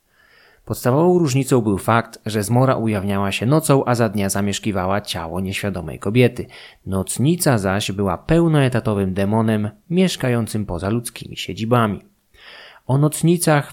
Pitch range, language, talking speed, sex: 105-135 Hz, Polish, 120 wpm, male